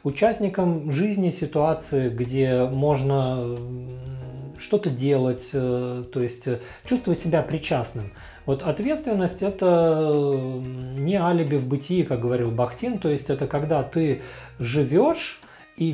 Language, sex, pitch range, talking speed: Russian, male, 125-170 Hz, 110 wpm